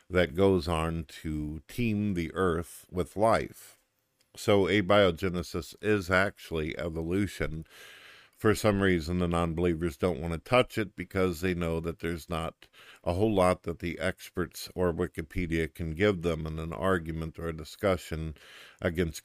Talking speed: 150 wpm